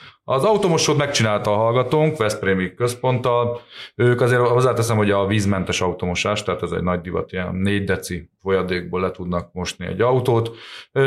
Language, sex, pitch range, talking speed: Hungarian, male, 95-120 Hz, 165 wpm